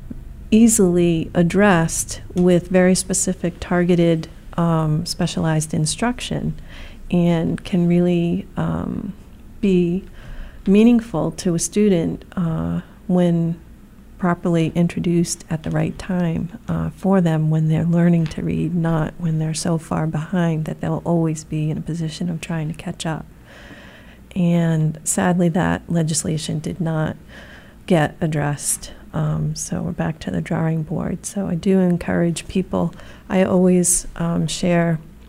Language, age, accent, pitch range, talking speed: English, 40-59, American, 160-180 Hz, 130 wpm